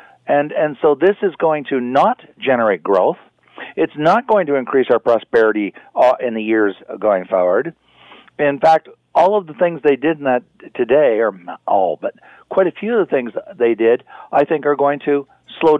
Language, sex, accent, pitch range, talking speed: English, male, American, 130-185 Hz, 190 wpm